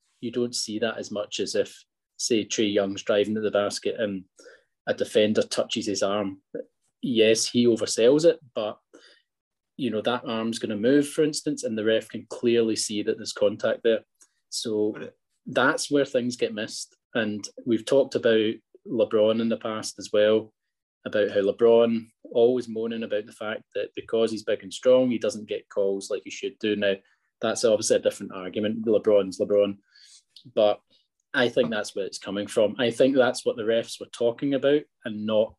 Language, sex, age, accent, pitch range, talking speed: English, male, 20-39, British, 105-145 Hz, 185 wpm